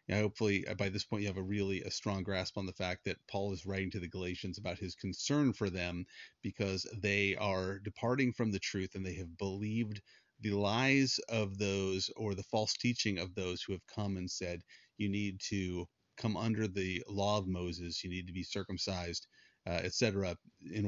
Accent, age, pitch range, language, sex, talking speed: American, 30-49, 95-105 Hz, English, male, 200 wpm